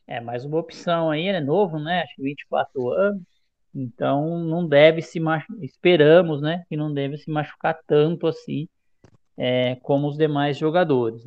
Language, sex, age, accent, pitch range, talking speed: Portuguese, male, 20-39, Brazilian, 145-185 Hz, 170 wpm